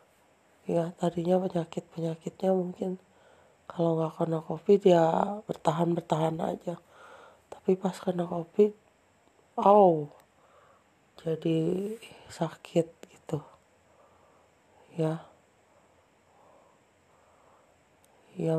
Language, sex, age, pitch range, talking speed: Indonesian, female, 30-49, 170-195 Hz, 75 wpm